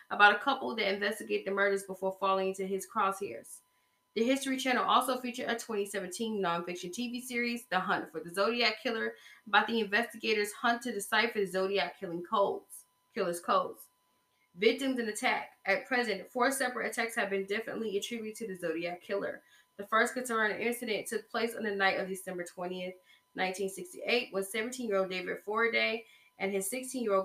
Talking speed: 165 wpm